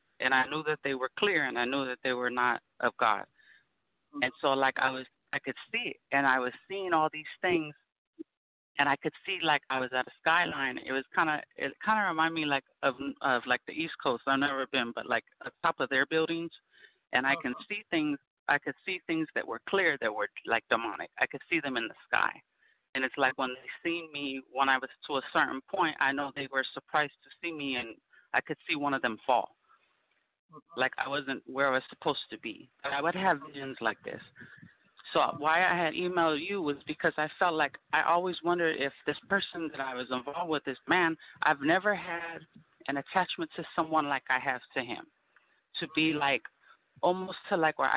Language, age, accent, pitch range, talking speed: English, 30-49, American, 135-175 Hz, 225 wpm